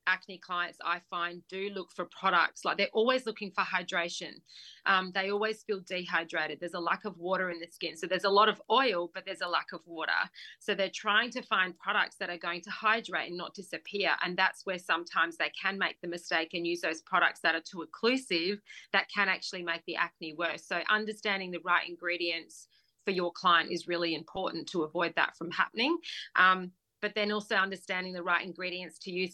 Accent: Australian